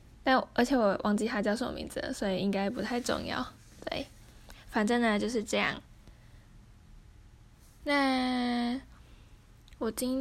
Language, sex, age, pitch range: Chinese, female, 10-29, 210-255 Hz